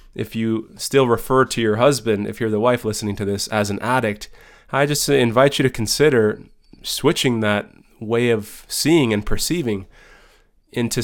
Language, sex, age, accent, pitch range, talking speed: English, male, 20-39, American, 105-130 Hz, 170 wpm